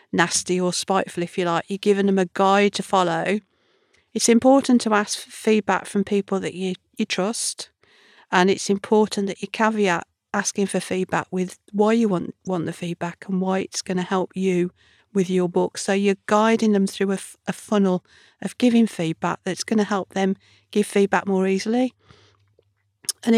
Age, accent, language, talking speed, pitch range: 40-59, British, English, 185 wpm, 185-215 Hz